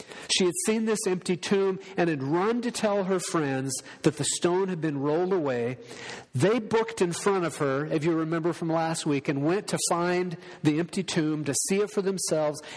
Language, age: English, 50-69